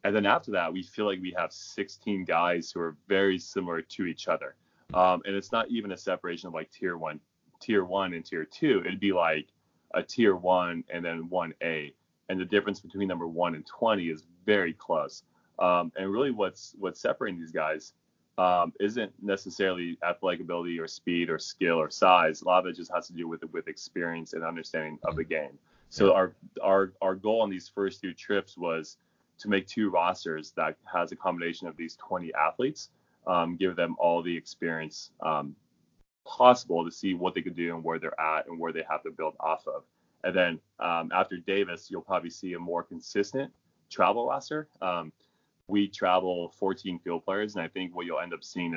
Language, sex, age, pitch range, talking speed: English, male, 20-39, 85-95 Hz, 205 wpm